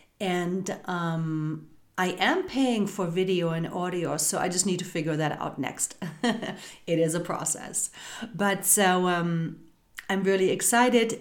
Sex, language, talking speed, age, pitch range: female, English, 150 wpm, 40-59, 170-210 Hz